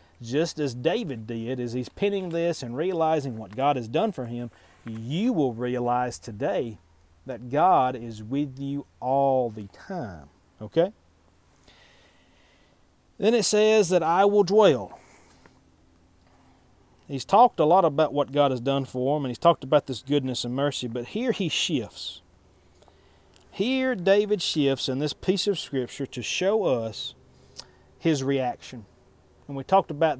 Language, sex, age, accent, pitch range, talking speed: English, male, 40-59, American, 120-170 Hz, 150 wpm